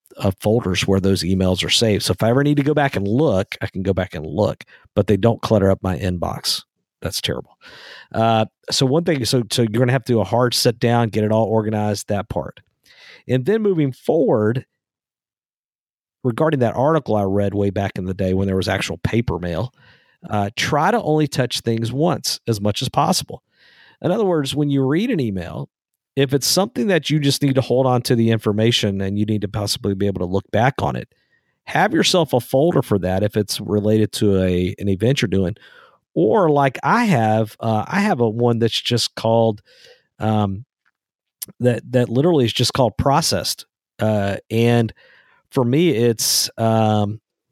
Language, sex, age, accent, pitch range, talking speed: English, male, 50-69, American, 105-130 Hz, 200 wpm